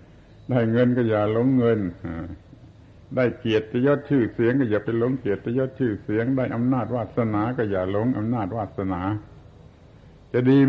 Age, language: 70-89, Thai